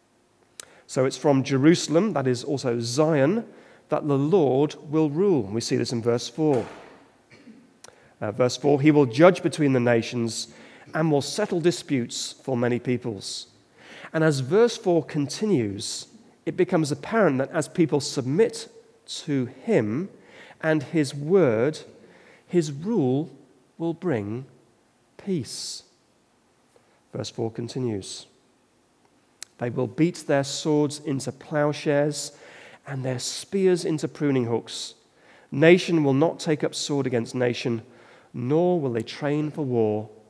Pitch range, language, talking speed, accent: 125-160 Hz, English, 130 wpm, British